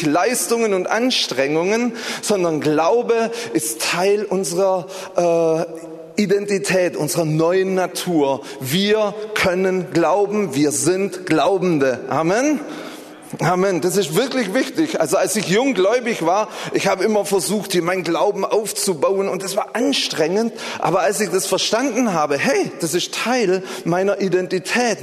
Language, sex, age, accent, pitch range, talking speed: German, male, 30-49, German, 170-215 Hz, 130 wpm